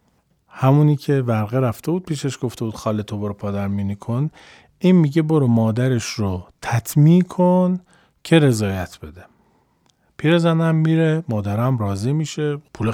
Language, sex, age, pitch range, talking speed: Persian, male, 40-59, 125-175 Hz, 140 wpm